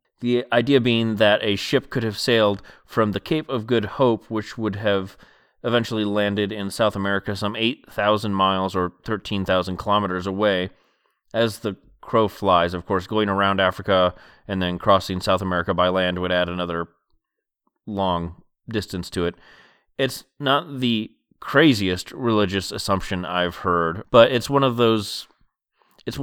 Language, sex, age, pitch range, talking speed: English, male, 30-49, 95-115 Hz, 155 wpm